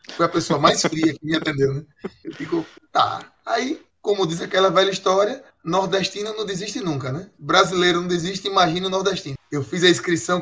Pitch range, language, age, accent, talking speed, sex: 150-210 Hz, Portuguese, 20-39, Brazilian, 190 wpm, male